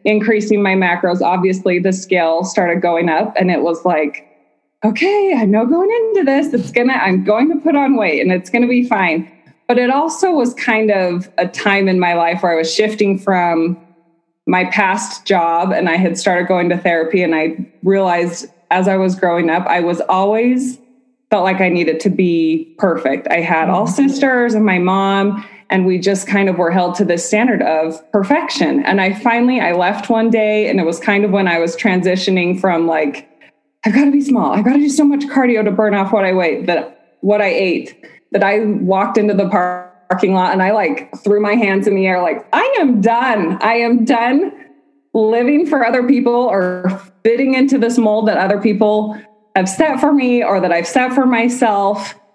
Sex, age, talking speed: female, 20-39, 200 wpm